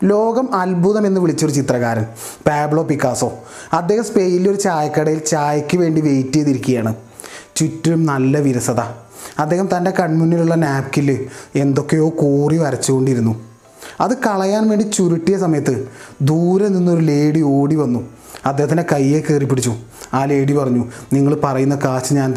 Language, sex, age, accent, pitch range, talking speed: Malayalam, male, 30-49, native, 135-185 Hz, 120 wpm